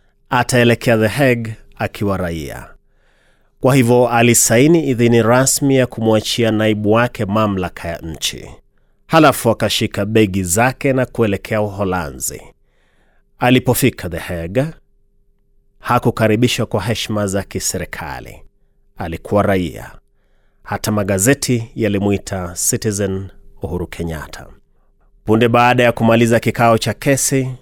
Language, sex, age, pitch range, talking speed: Swahili, male, 30-49, 100-125 Hz, 100 wpm